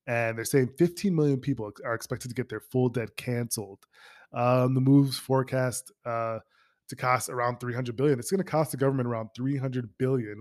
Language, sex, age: English, male, 20-39